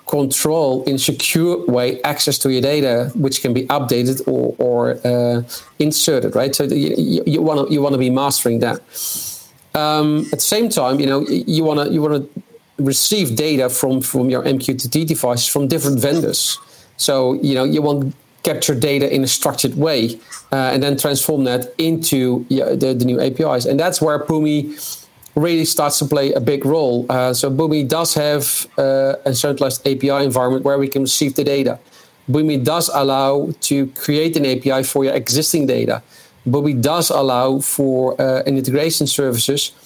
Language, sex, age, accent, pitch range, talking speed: Dutch, male, 40-59, Dutch, 135-155 Hz, 180 wpm